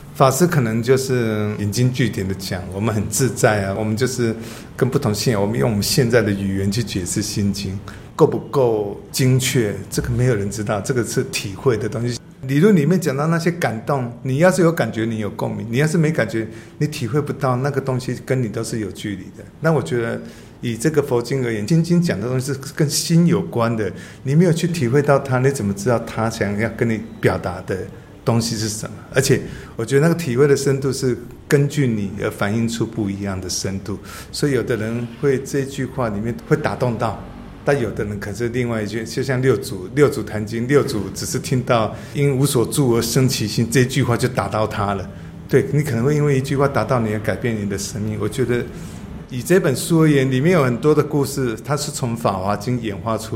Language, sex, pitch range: Chinese, male, 110-140 Hz